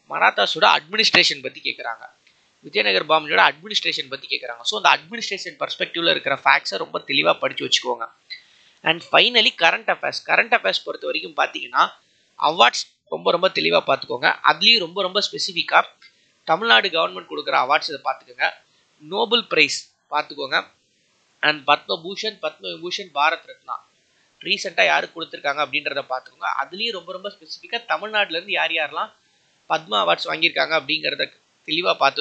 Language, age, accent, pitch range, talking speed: Tamil, 20-39, native, 165-260 Hz, 130 wpm